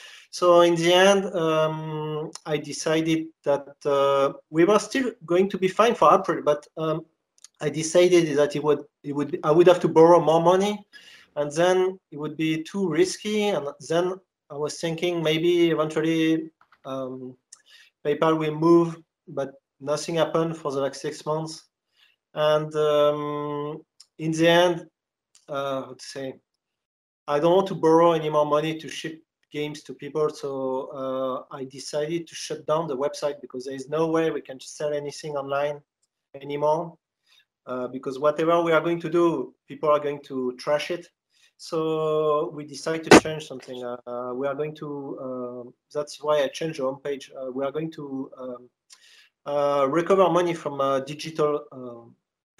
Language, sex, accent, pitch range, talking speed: English, male, French, 140-165 Hz, 170 wpm